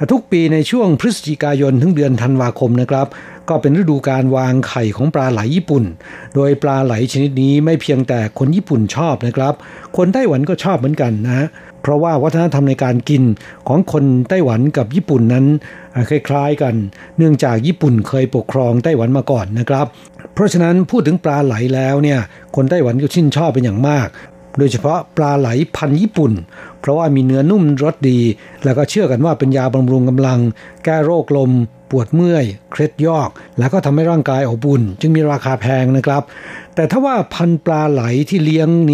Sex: male